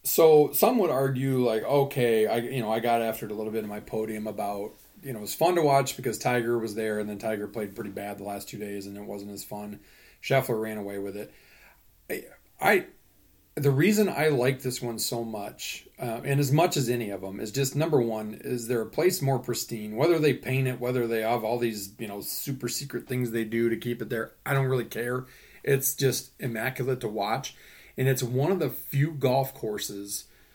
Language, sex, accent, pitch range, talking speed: English, male, American, 110-130 Hz, 230 wpm